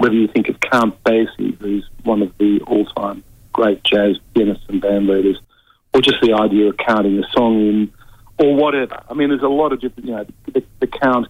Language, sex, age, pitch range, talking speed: English, male, 50-69, 105-125 Hz, 210 wpm